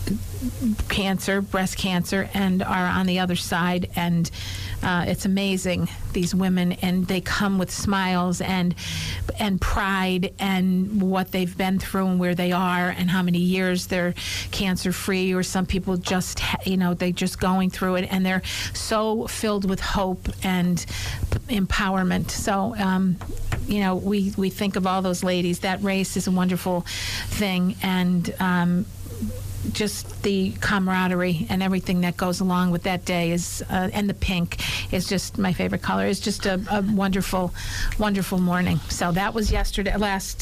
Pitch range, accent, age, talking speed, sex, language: 175-190 Hz, American, 50-69, 165 wpm, female, English